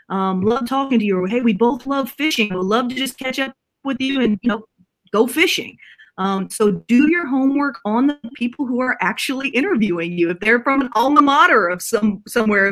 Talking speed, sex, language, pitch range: 210 wpm, female, English, 195-245 Hz